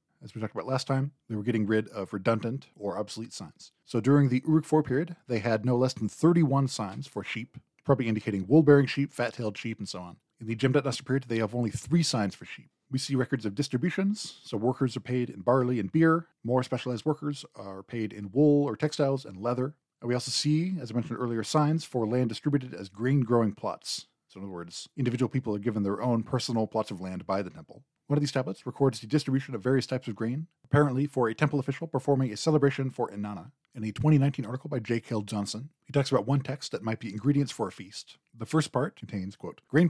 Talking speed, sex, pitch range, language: 235 wpm, male, 110-145 Hz, English